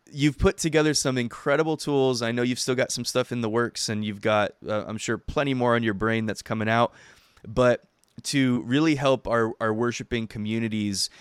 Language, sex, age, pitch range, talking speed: English, male, 20-39, 110-130 Hz, 205 wpm